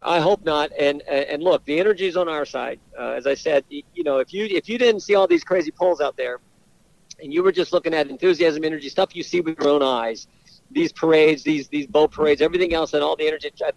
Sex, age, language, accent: male, 50-69, English, American